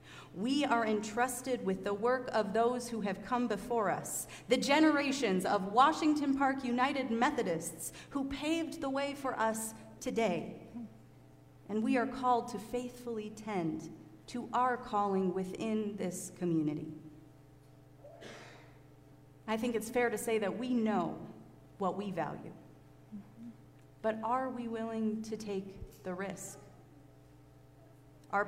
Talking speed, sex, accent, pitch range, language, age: 130 wpm, female, American, 185-250 Hz, English, 30-49